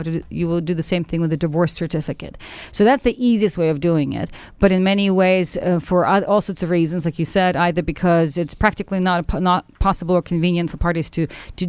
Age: 40-59